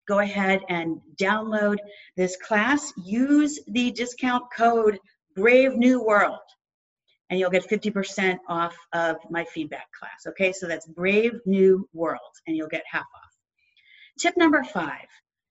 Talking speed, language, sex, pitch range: 140 wpm, English, female, 185-220 Hz